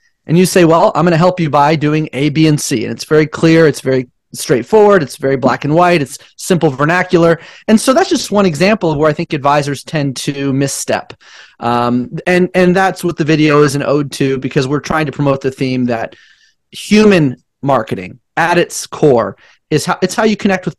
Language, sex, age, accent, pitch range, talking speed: English, male, 30-49, American, 135-185 Hz, 215 wpm